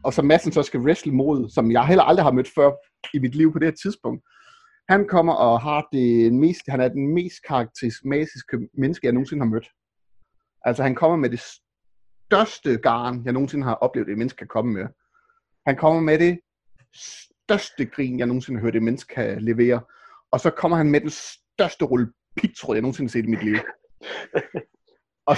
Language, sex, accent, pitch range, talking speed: Danish, male, native, 125-180 Hz, 200 wpm